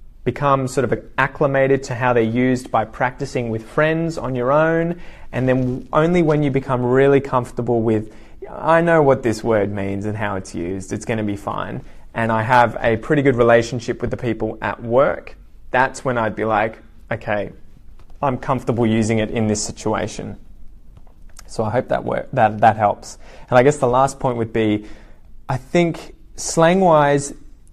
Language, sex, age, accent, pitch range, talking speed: English, male, 20-39, Australian, 110-135 Hz, 175 wpm